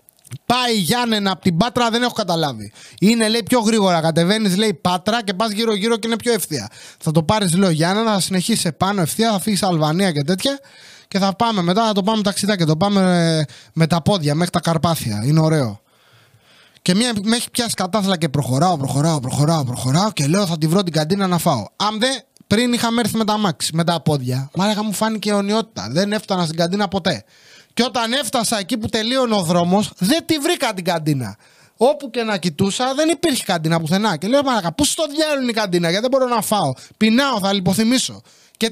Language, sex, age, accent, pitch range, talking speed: English, male, 20-39, Greek, 170-235 Hz, 210 wpm